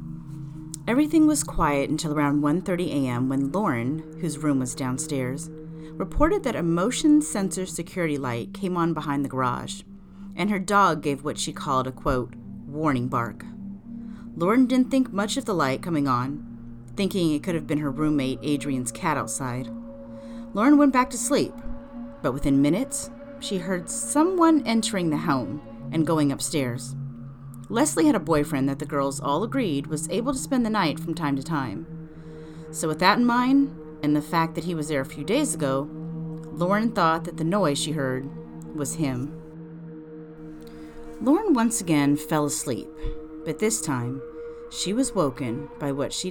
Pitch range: 140-195 Hz